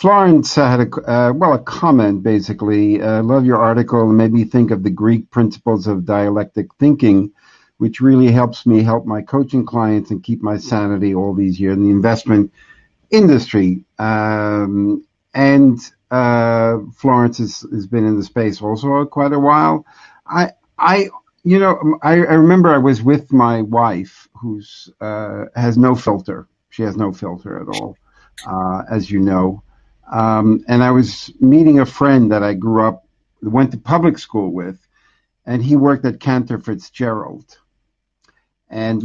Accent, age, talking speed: American, 50-69, 165 wpm